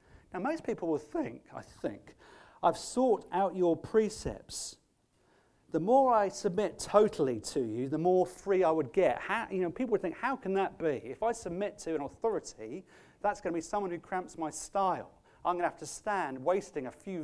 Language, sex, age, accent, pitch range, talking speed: English, male, 40-59, British, 145-205 Hz, 195 wpm